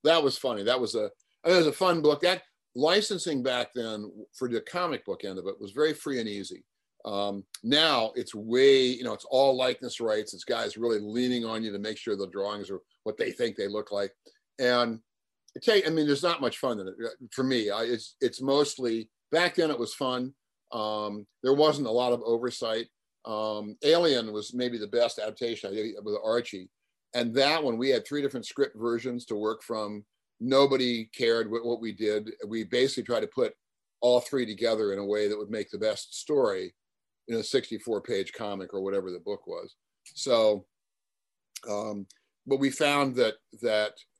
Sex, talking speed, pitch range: male, 200 wpm, 105-135 Hz